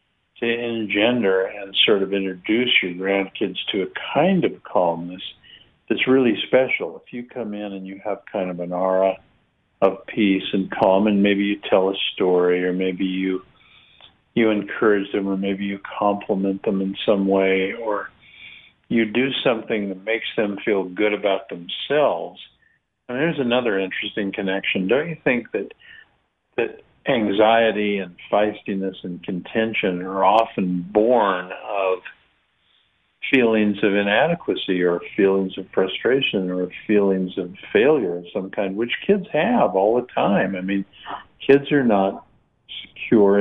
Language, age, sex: English, 50-69, male